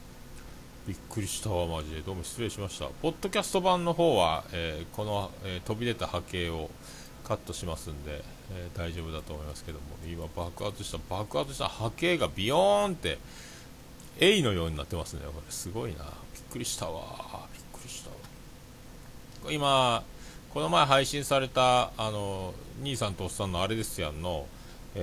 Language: Japanese